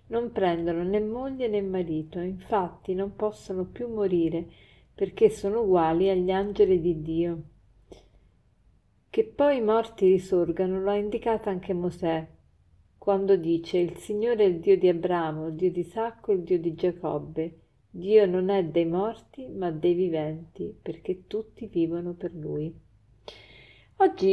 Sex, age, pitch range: female, 50-69, 170-210 Hz